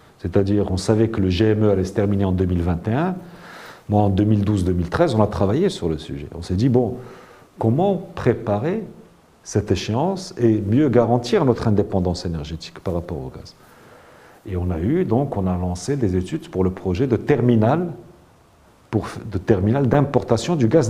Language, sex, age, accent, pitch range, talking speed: French, male, 50-69, French, 95-120 Hz, 170 wpm